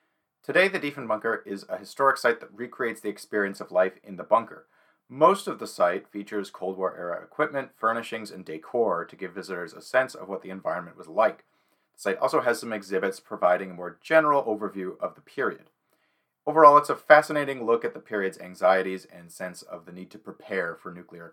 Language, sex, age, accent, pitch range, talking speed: English, male, 30-49, American, 95-120 Hz, 195 wpm